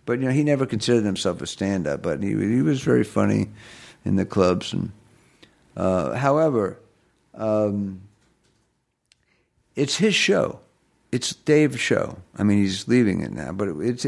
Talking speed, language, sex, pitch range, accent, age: 160 wpm, English, male, 105-135 Hz, American, 60-79